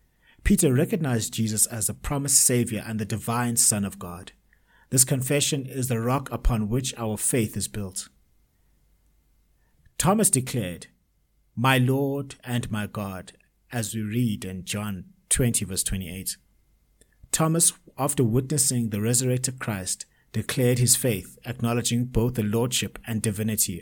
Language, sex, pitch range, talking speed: English, male, 105-130 Hz, 135 wpm